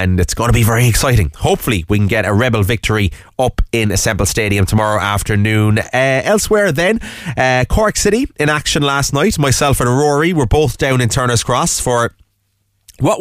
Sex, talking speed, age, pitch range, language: male, 185 wpm, 30-49, 105-140 Hz, English